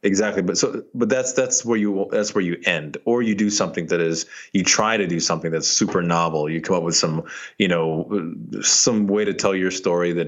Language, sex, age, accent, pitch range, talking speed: English, male, 20-39, American, 85-115 Hz, 235 wpm